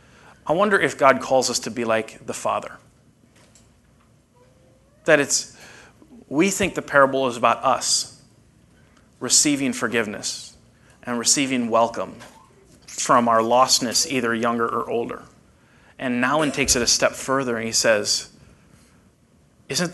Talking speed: 130 wpm